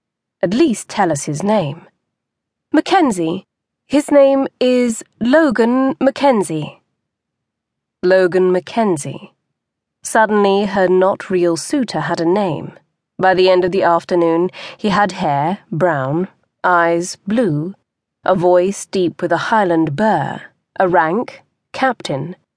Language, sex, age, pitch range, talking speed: English, female, 30-49, 170-230 Hz, 115 wpm